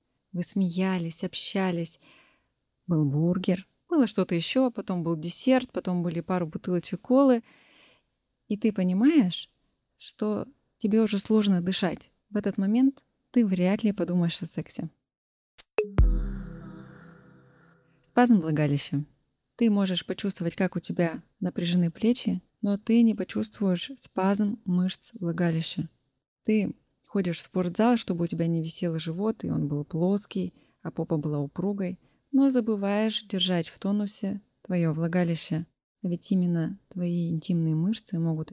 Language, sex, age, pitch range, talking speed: Russian, female, 20-39, 170-205 Hz, 125 wpm